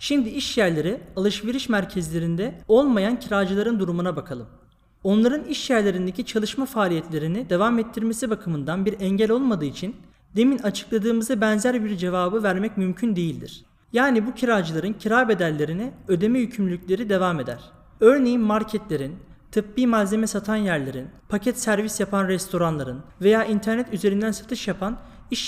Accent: native